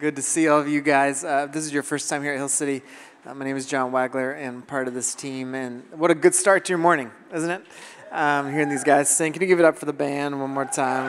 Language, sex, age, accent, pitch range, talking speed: English, male, 20-39, American, 130-150 Hz, 300 wpm